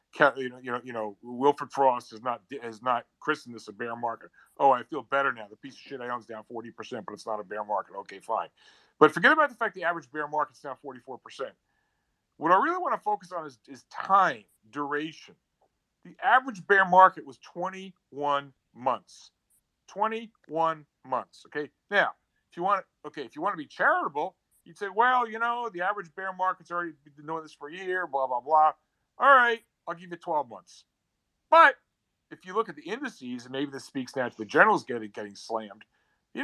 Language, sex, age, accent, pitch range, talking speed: English, male, 50-69, American, 130-205 Hz, 215 wpm